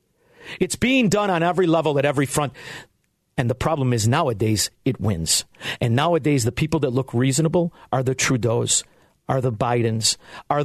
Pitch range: 130-180 Hz